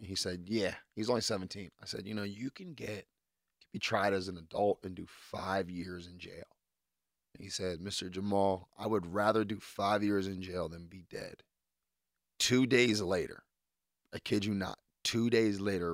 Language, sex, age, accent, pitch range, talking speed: English, male, 30-49, American, 90-105 Hz, 190 wpm